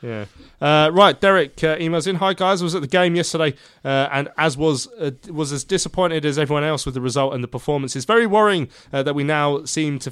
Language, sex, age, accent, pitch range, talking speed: English, male, 20-39, British, 125-155 Hz, 235 wpm